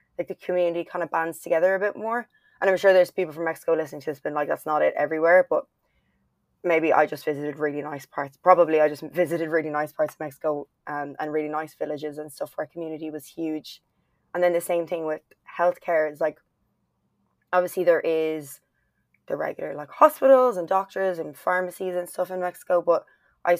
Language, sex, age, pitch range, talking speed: English, female, 20-39, 150-180 Hz, 205 wpm